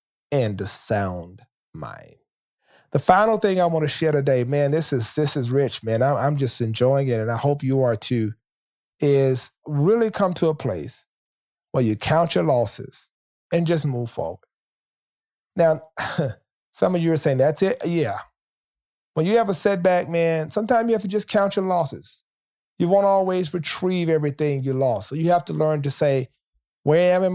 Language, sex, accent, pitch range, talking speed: English, male, American, 135-175 Hz, 190 wpm